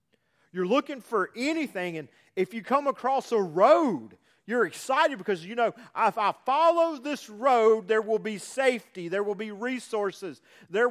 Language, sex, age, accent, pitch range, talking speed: English, male, 40-59, American, 210-270 Hz, 165 wpm